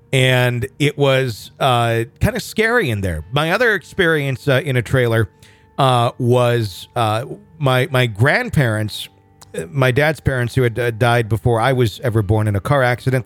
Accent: American